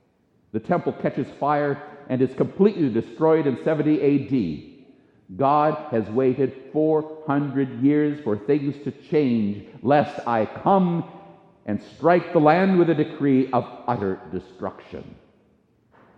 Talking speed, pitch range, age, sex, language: 120 wpm, 135-195 Hz, 50-69, male, English